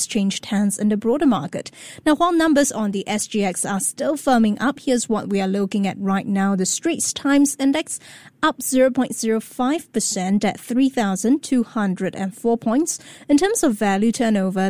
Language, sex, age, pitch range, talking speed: English, female, 20-39, 205-265 Hz, 155 wpm